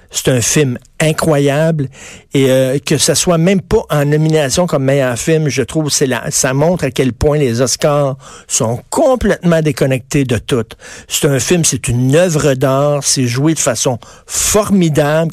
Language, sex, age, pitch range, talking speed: French, male, 60-79, 135-165 Hz, 170 wpm